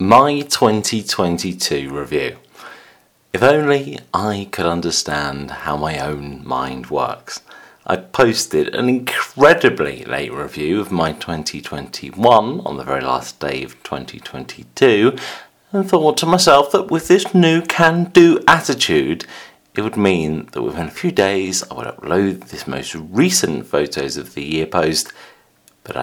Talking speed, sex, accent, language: 135 wpm, male, British, English